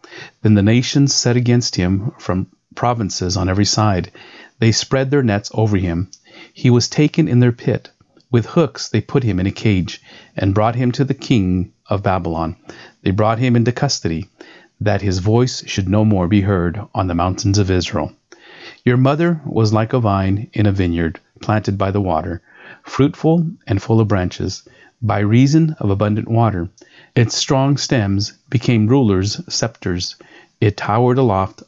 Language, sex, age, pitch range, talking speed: English, male, 40-59, 100-125 Hz, 170 wpm